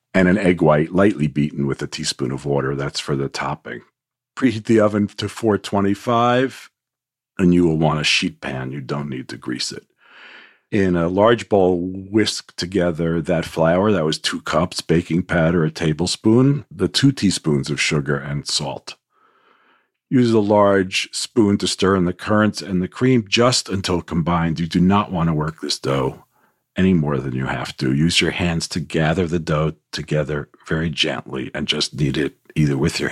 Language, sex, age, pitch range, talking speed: English, male, 50-69, 75-100 Hz, 185 wpm